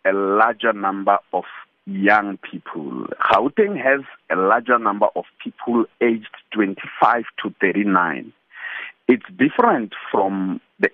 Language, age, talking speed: English, 50-69, 115 wpm